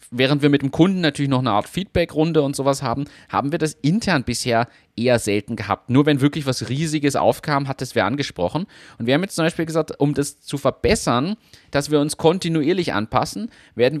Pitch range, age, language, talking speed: 125-155 Hz, 30-49, German, 205 wpm